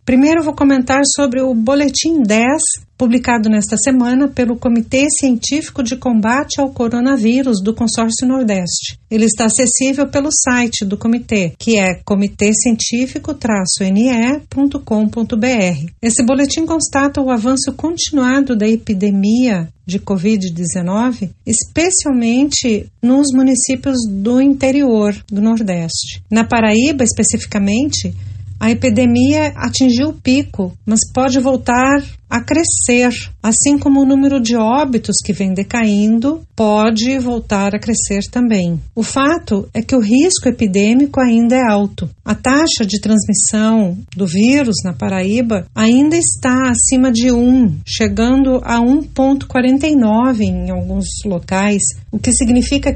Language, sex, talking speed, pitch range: Portuguese, female, 120 wpm, 215-265 Hz